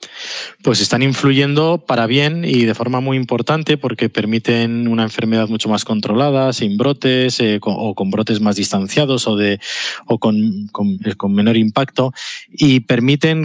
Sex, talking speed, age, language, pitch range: male, 145 wpm, 20-39, Spanish, 105-130 Hz